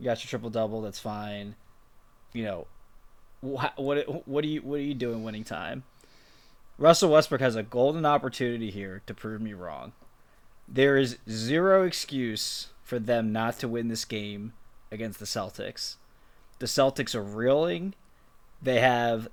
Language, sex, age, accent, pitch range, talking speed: English, male, 20-39, American, 110-140 Hz, 160 wpm